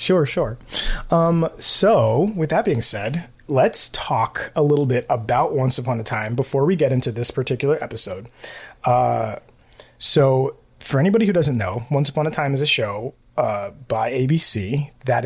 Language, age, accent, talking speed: English, 30-49, American, 170 wpm